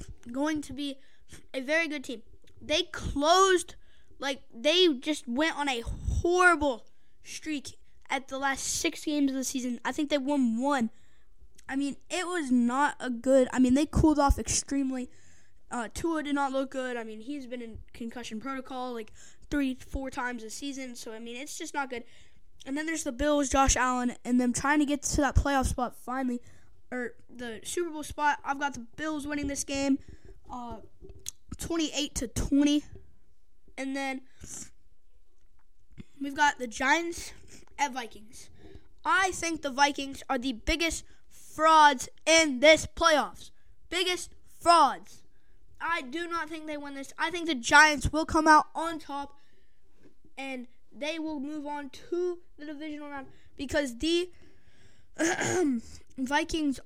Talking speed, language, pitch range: 160 wpm, English, 260-310 Hz